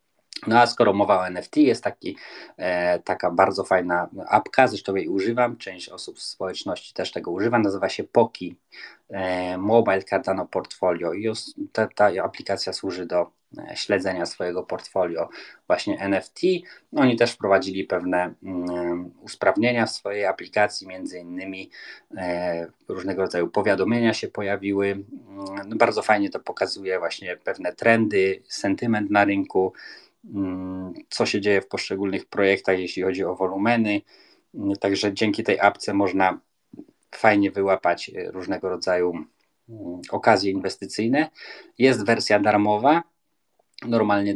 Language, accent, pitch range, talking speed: Polish, native, 95-115 Hz, 130 wpm